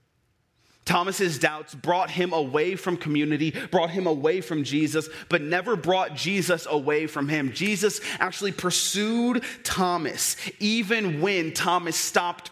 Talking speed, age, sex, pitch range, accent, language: 130 wpm, 30-49, male, 150-190 Hz, American, English